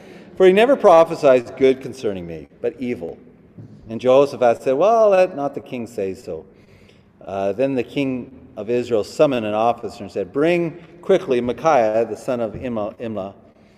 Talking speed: 160 wpm